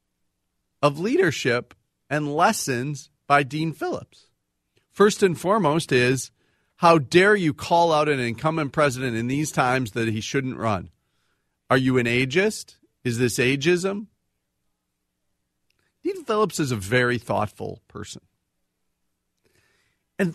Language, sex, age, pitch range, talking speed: English, male, 40-59, 120-170 Hz, 120 wpm